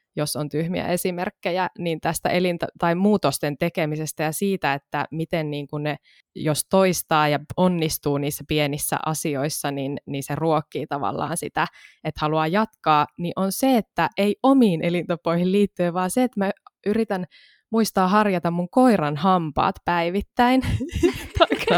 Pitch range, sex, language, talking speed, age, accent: 155-215 Hz, female, Finnish, 145 wpm, 20-39, native